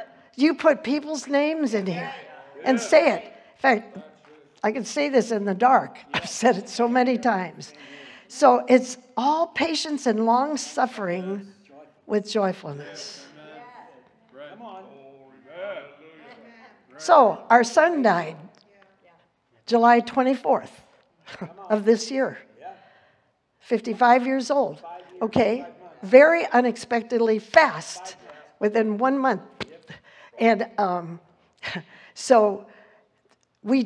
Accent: American